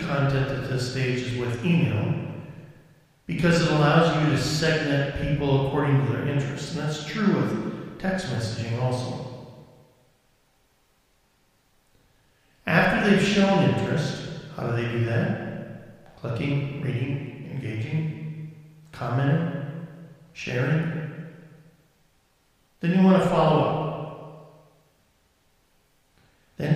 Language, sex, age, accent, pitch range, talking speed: English, male, 50-69, American, 125-160 Hz, 100 wpm